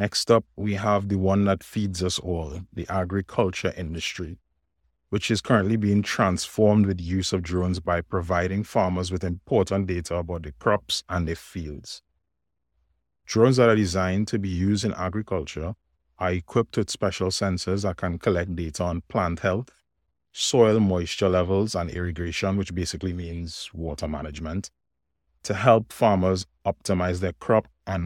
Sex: male